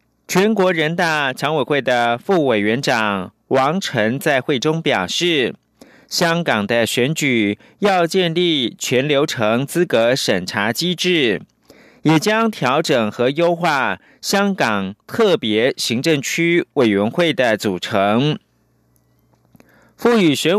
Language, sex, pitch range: Chinese, male, 120-175 Hz